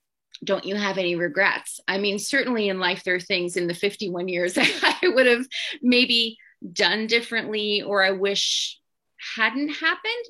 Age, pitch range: 30-49, 180-220 Hz